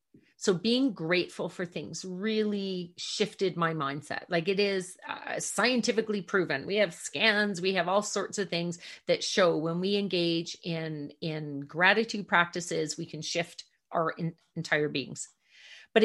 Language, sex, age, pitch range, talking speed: English, female, 40-59, 170-215 Hz, 155 wpm